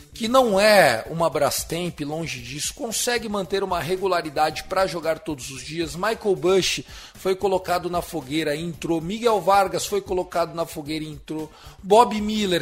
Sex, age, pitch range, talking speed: male, 40-59, 160-205 Hz, 155 wpm